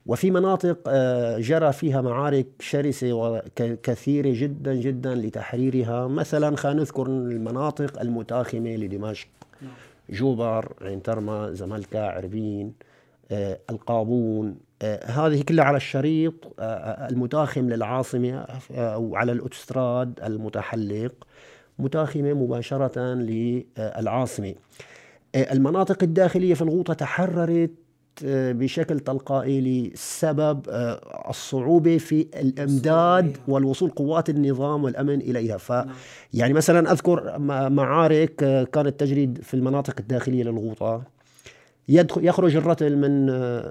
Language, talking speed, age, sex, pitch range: Arabic, 85 wpm, 50-69, male, 115-145 Hz